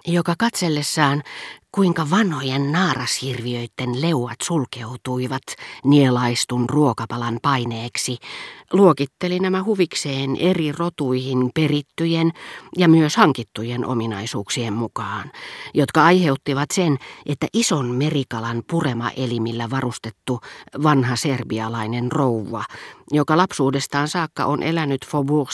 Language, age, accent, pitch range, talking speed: Finnish, 40-59, native, 125-155 Hz, 90 wpm